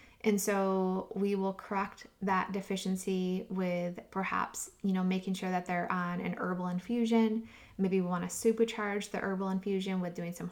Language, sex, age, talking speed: English, female, 20-39, 170 wpm